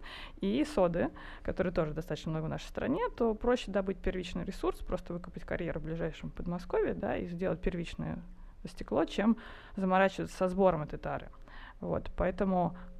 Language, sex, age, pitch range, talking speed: Russian, female, 20-39, 170-200 Hz, 150 wpm